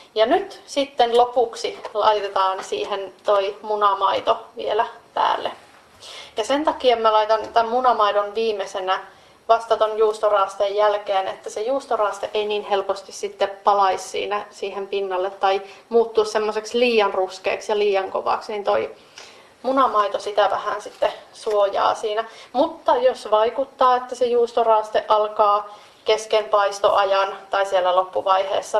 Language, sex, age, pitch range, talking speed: Finnish, female, 30-49, 200-245 Hz, 125 wpm